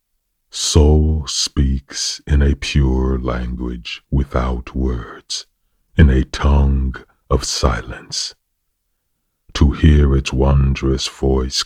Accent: American